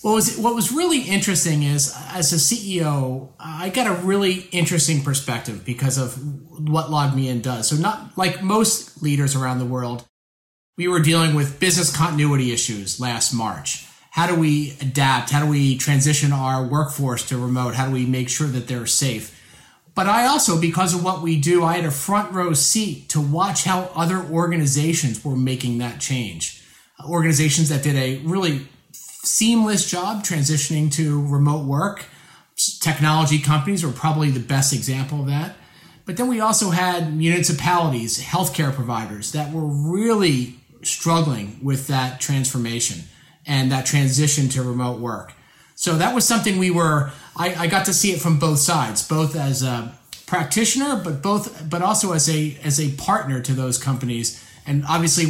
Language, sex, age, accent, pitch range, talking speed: English, male, 30-49, American, 130-175 Hz, 170 wpm